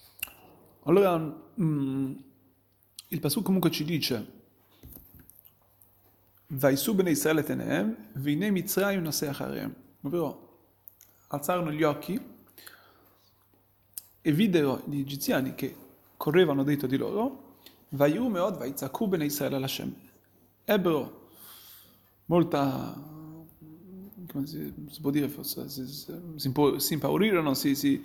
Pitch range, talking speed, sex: 120-175 Hz, 80 wpm, male